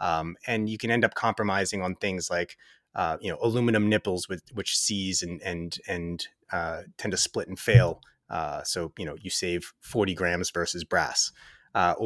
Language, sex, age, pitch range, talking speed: English, male, 30-49, 100-145 Hz, 190 wpm